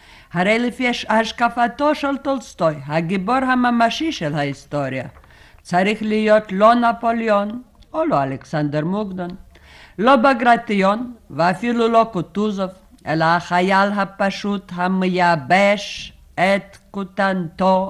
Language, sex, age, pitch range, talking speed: Hebrew, female, 50-69, 170-215 Hz, 95 wpm